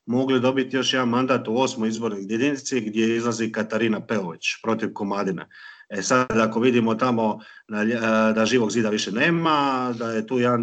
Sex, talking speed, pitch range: male, 180 wpm, 110-130 Hz